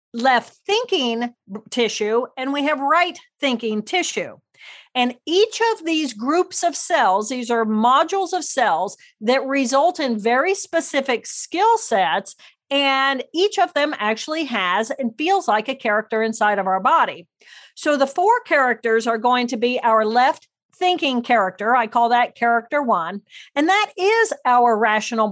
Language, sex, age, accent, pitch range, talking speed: English, female, 50-69, American, 230-300 Hz, 155 wpm